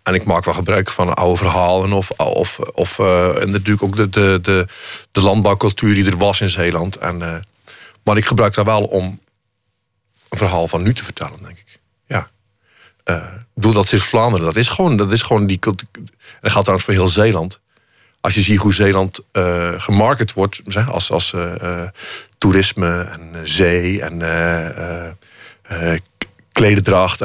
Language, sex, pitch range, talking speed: Dutch, male, 95-110 Hz, 165 wpm